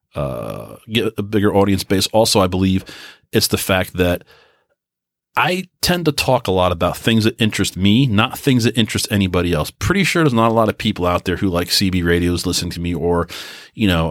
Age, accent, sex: 30-49, American, male